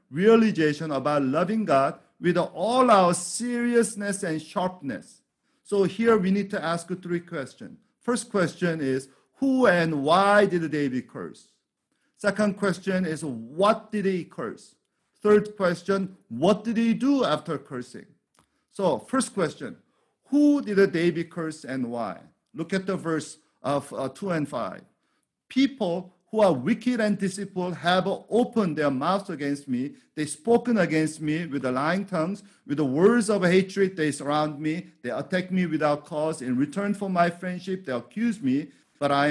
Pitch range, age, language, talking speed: 150-205 Hz, 50-69, English, 155 wpm